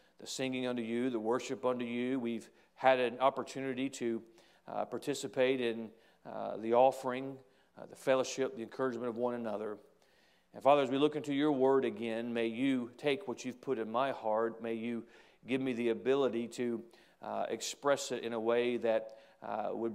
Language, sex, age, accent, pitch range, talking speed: English, male, 40-59, American, 115-130 Hz, 180 wpm